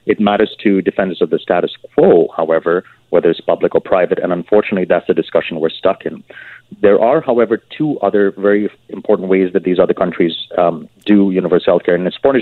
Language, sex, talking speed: English, male, 205 wpm